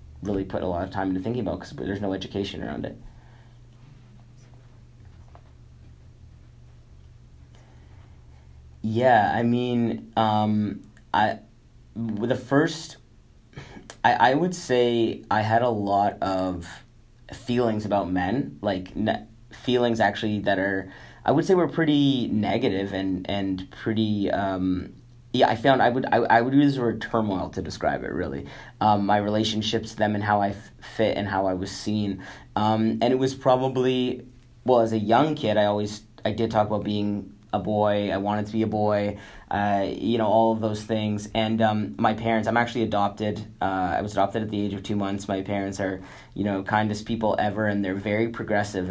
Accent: American